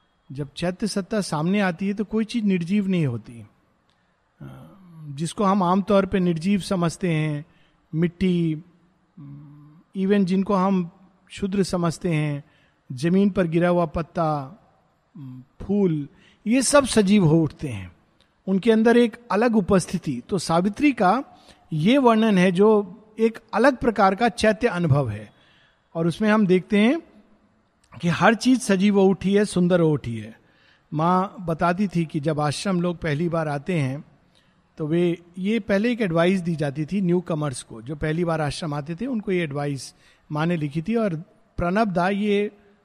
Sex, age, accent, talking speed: male, 50-69, native, 155 wpm